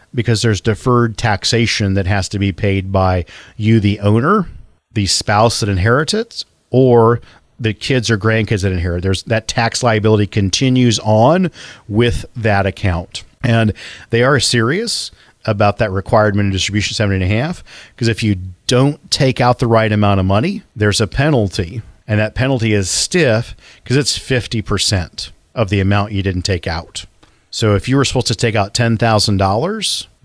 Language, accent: English, American